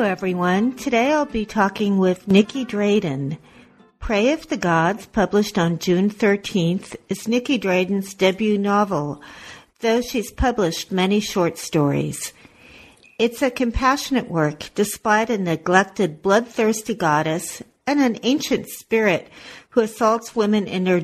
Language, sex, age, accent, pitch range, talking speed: English, female, 50-69, American, 175-230 Hz, 130 wpm